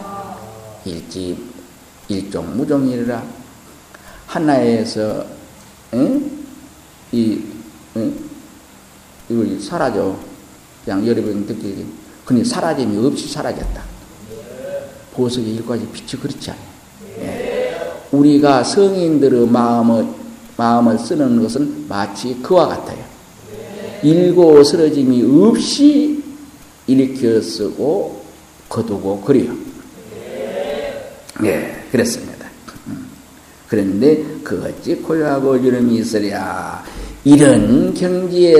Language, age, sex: Korean, 50-69, male